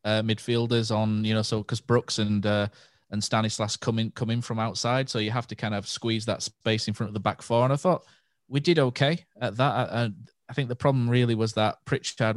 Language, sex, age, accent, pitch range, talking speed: English, male, 20-39, British, 100-120 Hz, 235 wpm